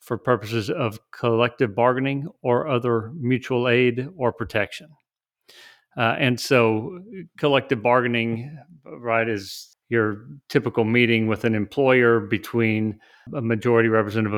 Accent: American